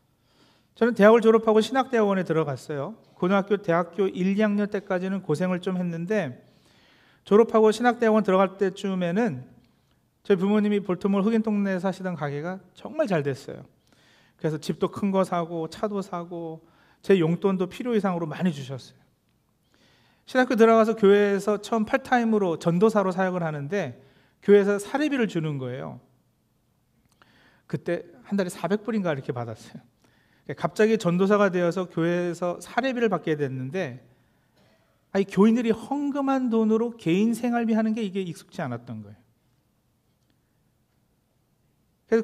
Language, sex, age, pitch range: Korean, male, 40-59, 165-220 Hz